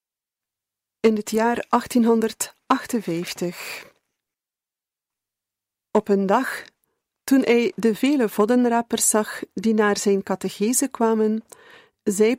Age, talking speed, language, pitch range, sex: 40-59, 90 wpm, Dutch, 205-245 Hz, female